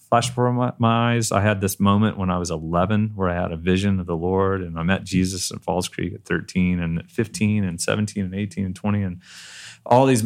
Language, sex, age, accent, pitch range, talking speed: English, male, 30-49, American, 95-115 Hz, 240 wpm